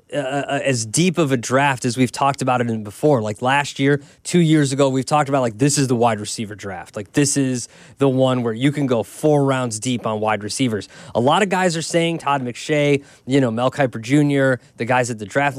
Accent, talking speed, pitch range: American, 240 wpm, 130-170 Hz